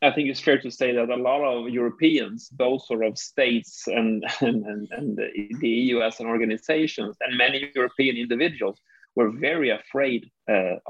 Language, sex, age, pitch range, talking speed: English, male, 30-49, 115-140 Hz, 165 wpm